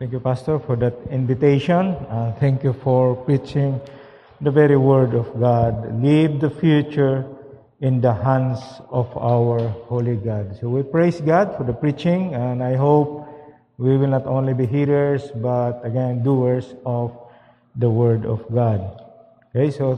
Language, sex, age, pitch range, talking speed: English, male, 50-69, 125-145 Hz, 155 wpm